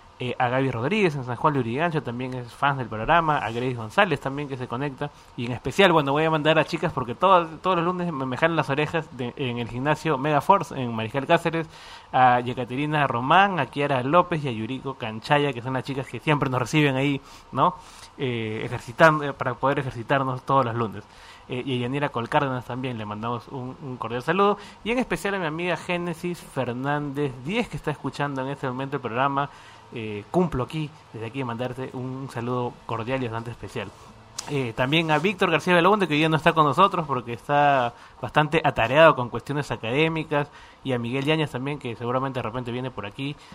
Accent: Argentinian